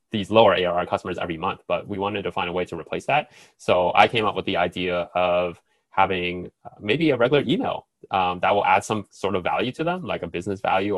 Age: 20-39